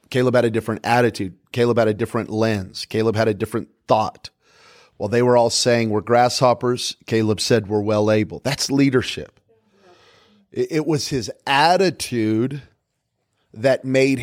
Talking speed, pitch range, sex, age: 150 wpm, 110-135 Hz, male, 30-49